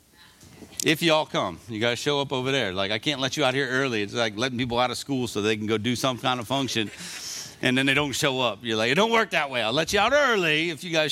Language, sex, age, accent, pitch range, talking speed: English, male, 50-69, American, 120-160 Hz, 290 wpm